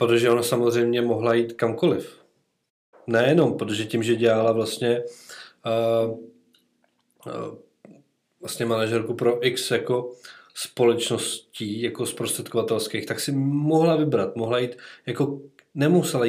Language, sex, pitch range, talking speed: Czech, male, 115-135 Hz, 110 wpm